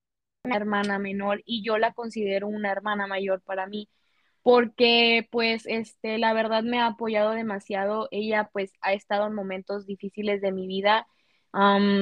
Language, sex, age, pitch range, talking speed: Spanish, female, 20-39, 205-230 Hz, 155 wpm